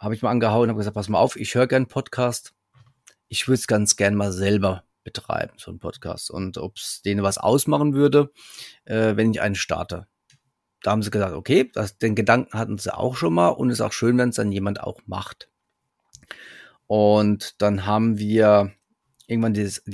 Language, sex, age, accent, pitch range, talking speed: German, male, 30-49, German, 100-115 Hz, 200 wpm